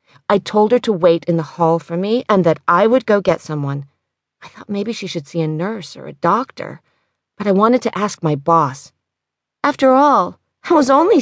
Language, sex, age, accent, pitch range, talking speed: English, female, 40-59, American, 175-255 Hz, 215 wpm